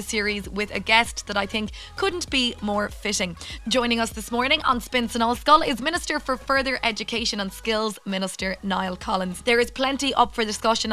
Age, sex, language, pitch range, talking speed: 20-39, female, English, 205-260 Hz, 190 wpm